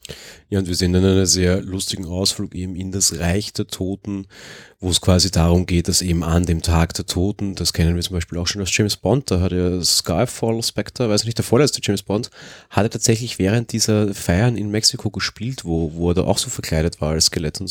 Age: 30-49